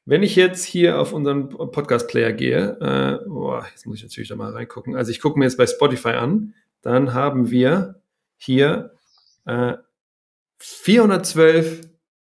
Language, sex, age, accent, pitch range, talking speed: German, male, 30-49, German, 125-170 Hz, 150 wpm